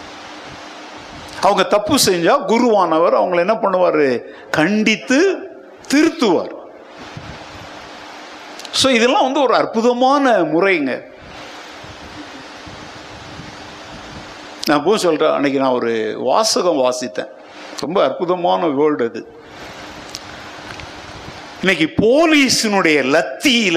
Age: 60-79